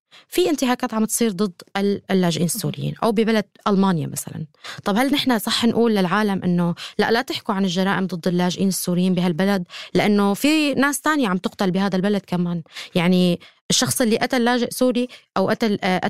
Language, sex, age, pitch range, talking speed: Arabic, female, 20-39, 185-235 Hz, 170 wpm